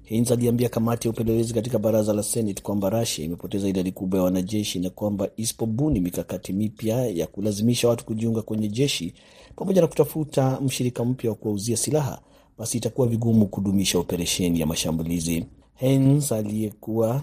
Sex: male